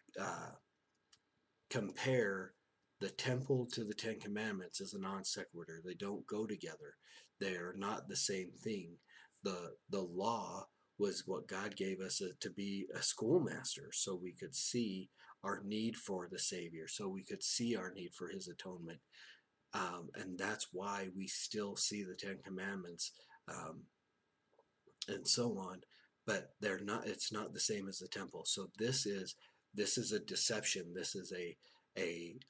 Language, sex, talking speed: English, male, 160 wpm